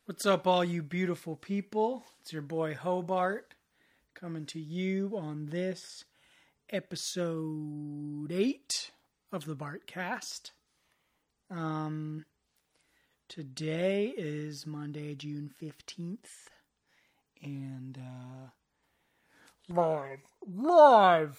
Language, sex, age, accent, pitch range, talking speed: English, male, 30-49, American, 155-210 Hz, 85 wpm